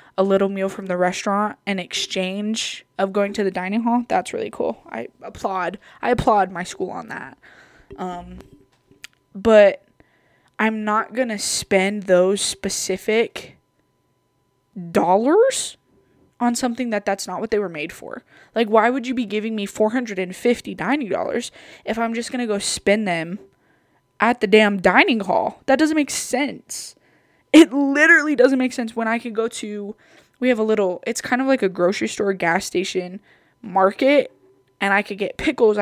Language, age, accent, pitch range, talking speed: English, 20-39, American, 195-255 Hz, 165 wpm